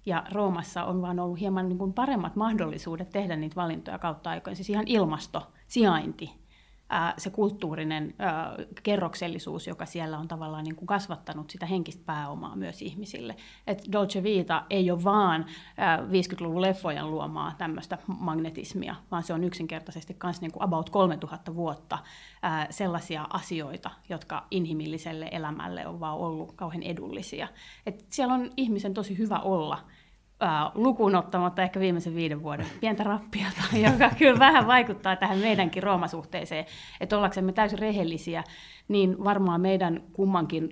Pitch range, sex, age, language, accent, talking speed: 165-195 Hz, female, 30-49, Finnish, native, 140 wpm